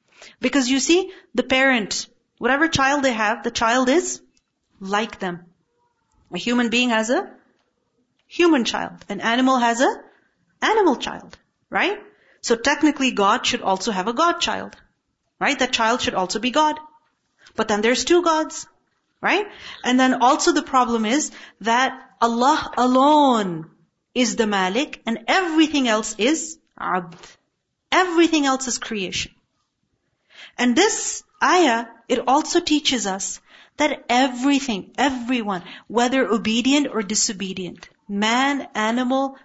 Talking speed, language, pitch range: 130 wpm, English, 225-290 Hz